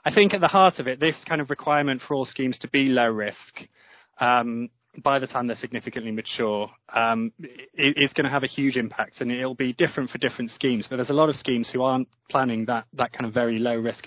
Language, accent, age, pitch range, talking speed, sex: English, British, 20-39, 115-130 Hz, 245 wpm, male